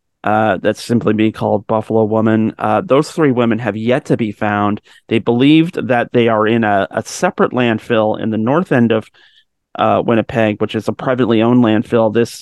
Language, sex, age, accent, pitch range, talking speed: English, male, 30-49, American, 110-130 Hz, 195 wpm